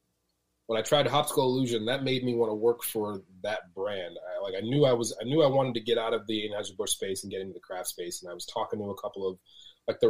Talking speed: 285 wpm